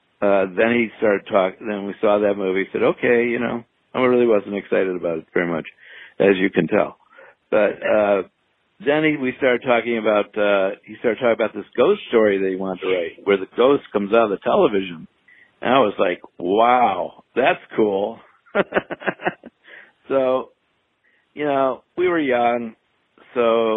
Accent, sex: American, male